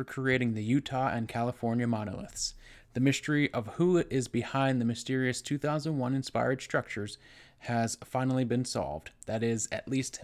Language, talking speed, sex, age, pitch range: English, 145 wpm, male, 20-39, 115-135 Hz